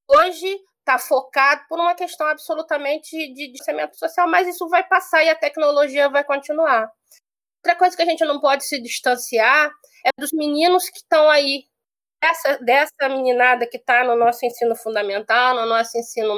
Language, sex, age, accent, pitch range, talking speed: Portuguese, female, 20-39, Brazilian, 245-310 Hz, 170 wpm